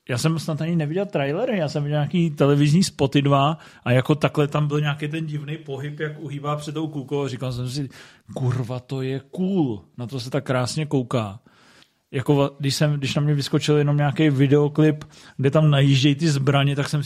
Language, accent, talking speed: Czech, native, 200 wpm